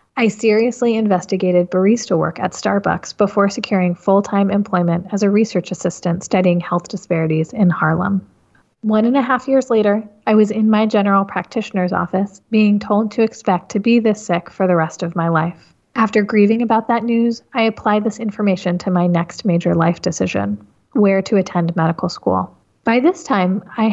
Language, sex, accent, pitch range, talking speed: English, female, American, 175-220 Hz, 180 wpm